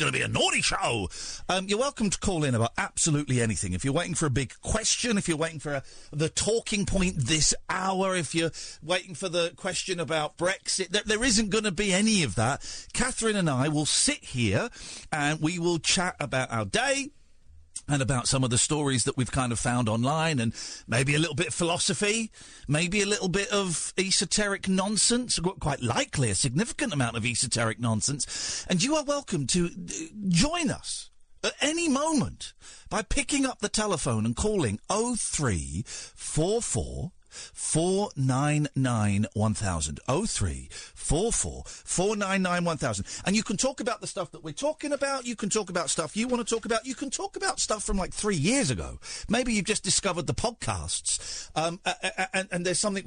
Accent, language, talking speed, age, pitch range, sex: British, English, 190 wpm, 40-59, 130-205 Hz, male